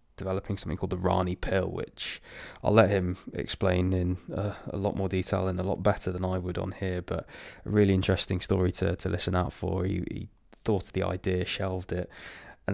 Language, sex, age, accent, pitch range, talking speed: English, male, 20-39, British, 90-100 Hz, 210 wpm